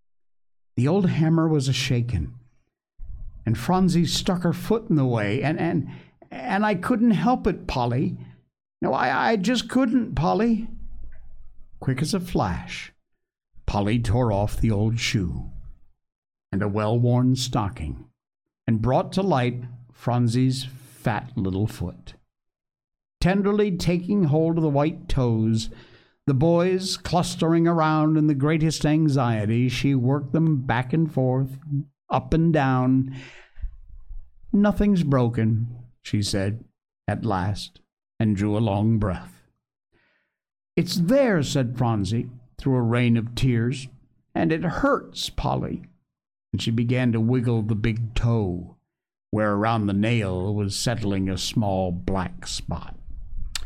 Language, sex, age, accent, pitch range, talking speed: English, male, 60-79, American, 105-160 Hz, 130 wpm